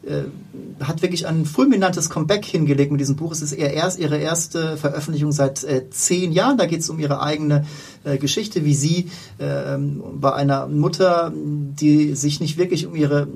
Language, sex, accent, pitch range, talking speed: German, male, German, 140-165 Hz, 180 wpm